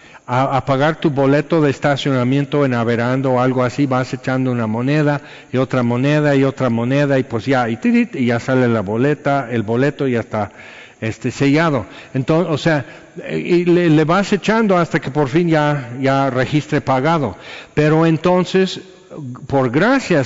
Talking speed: 170 wpm